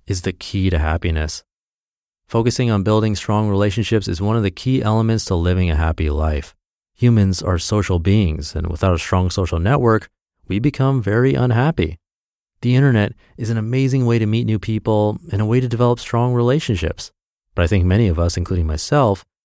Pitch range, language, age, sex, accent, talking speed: 90-115 Hz, English, 30-49, male, American, 185 wpm